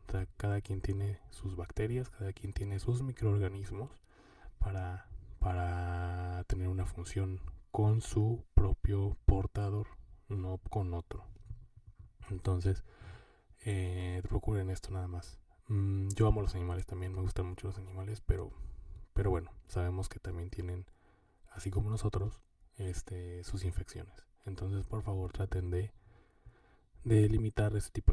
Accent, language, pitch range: Mexican, Spanish, 90-105 Hz